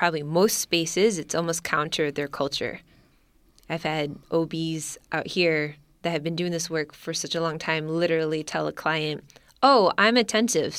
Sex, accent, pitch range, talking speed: female, American, 150-180 Hz, 170 wpm